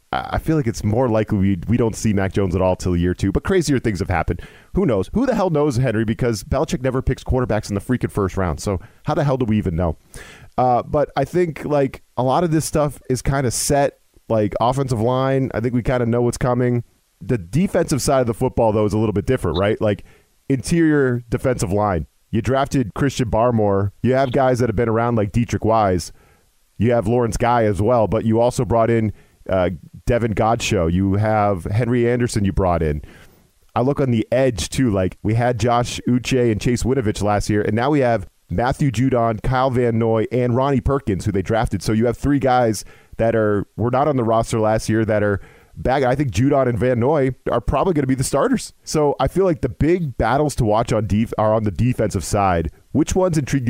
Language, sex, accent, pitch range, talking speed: English, male, American, 105-130 Hz, 230 wpm